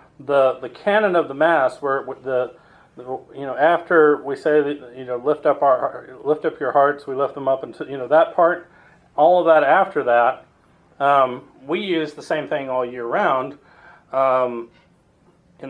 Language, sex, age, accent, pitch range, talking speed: English, male, 40-59, American, 130-165 Hz, 185 wpm